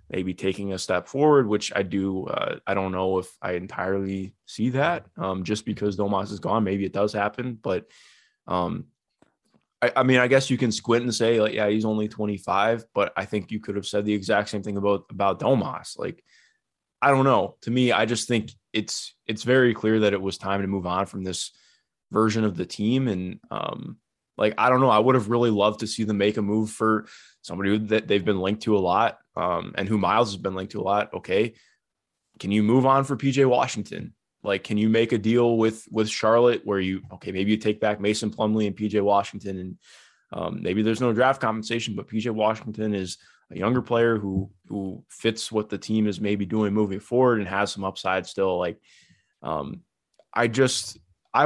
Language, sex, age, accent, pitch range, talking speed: English, male, 20-39, American, 100-115 Hz, 215 wpm